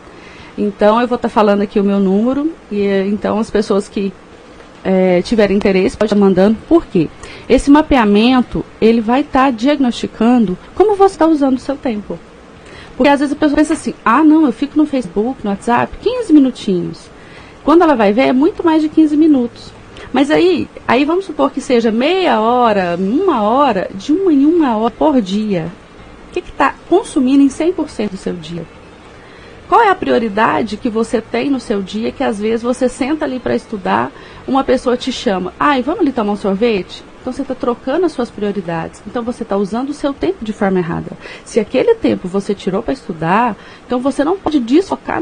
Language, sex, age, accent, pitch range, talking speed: Portuguese, female, 30-49, Brazilian, 205-285 Hz, 200 wpm